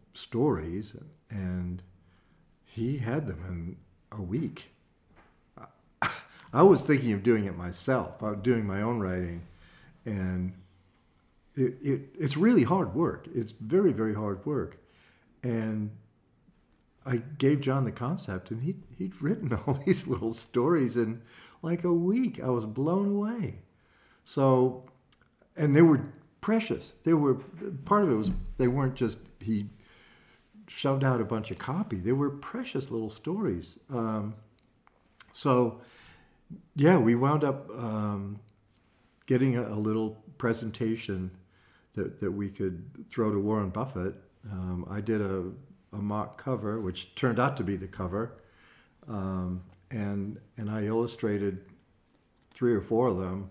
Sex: male